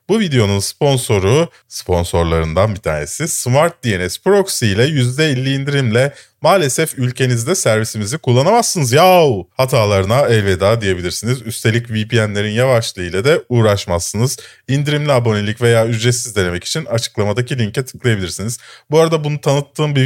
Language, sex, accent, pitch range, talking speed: Turkish, male, native, 100-135 Hz, 120 wpm